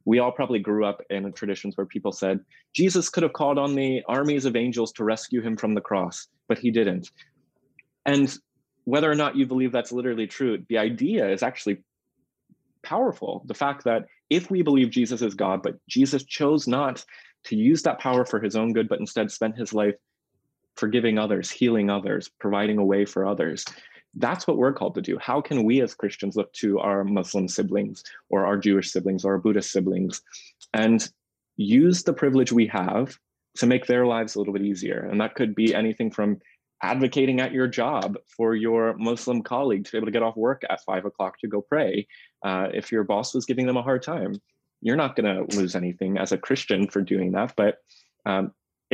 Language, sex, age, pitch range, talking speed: English, male, 20-39, 100-125 Hz, 205 wpm